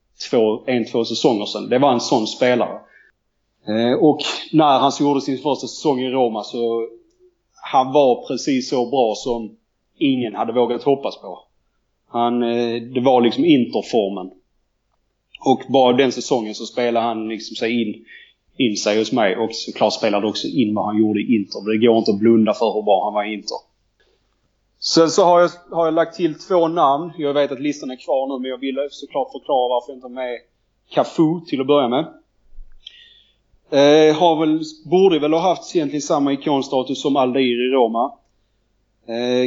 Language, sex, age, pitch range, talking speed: Swedish, male, 30-49, 115-150 Hz, 180 wpm